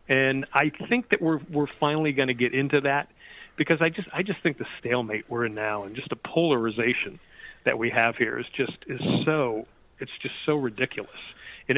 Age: 40-59